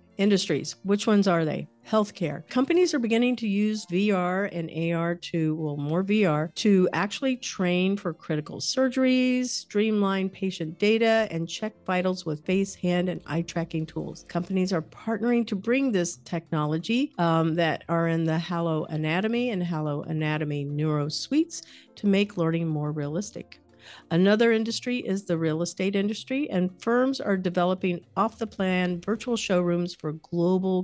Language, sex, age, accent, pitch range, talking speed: English, female, 50-69, American, 165-210 Hz, 155 wpm